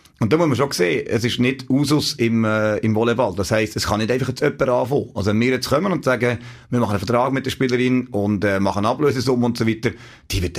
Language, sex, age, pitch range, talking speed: German, male, 30-49, 110-130 Hz, 265 wpm